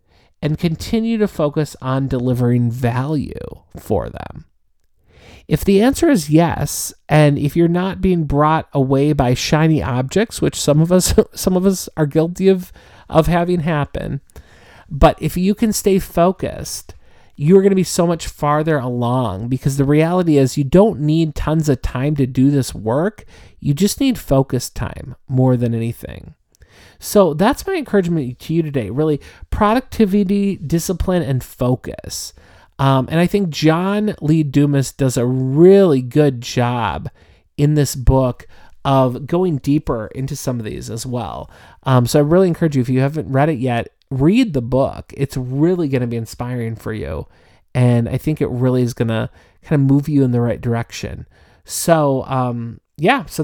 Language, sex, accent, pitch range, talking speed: English, male, American, 125-175 Hz, 170 wpm